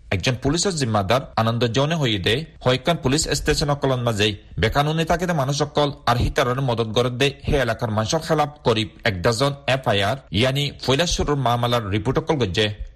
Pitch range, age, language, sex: 110-145 Hz, 40-59, Bengali, male